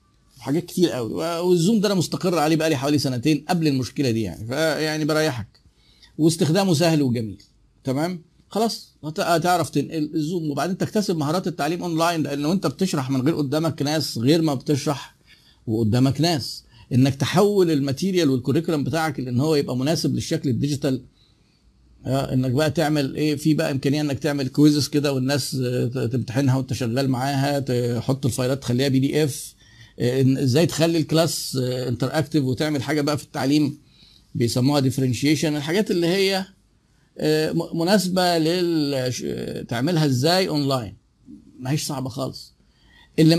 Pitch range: 135-170 Hz